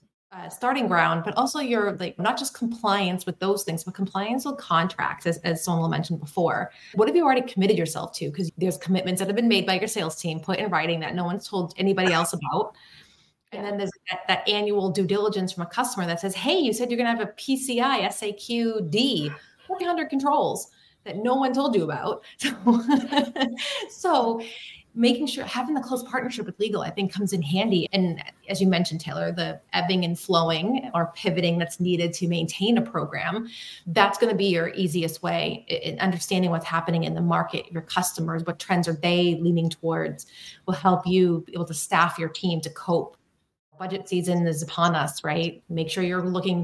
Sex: female